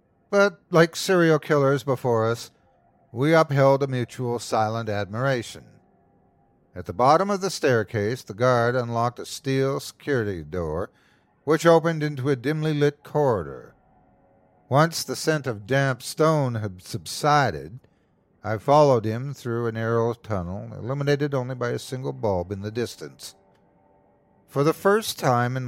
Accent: American